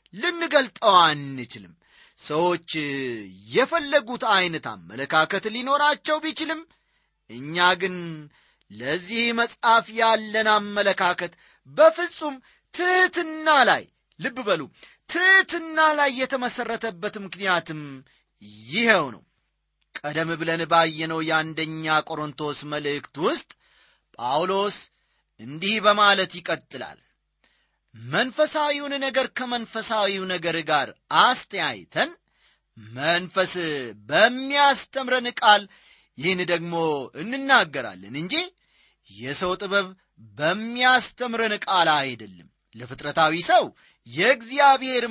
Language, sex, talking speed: Amharic, male, 75 wpm